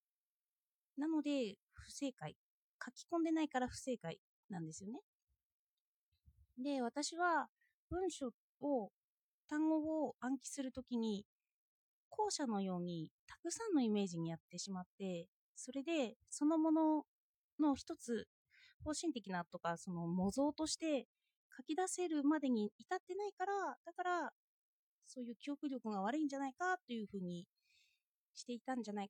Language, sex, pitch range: Japanese, female, 195-300 Hz